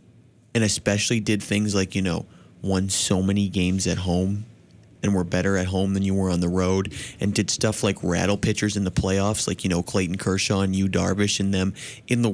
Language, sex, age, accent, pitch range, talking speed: English, male, 20-39, American, 95-120 Hz, 220 wpm